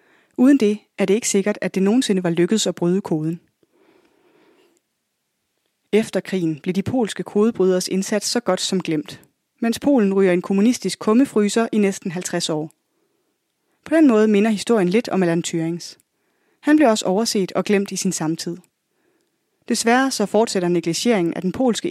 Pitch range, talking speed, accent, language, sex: 180-245 Hz, 165 wpm, native, Danish, female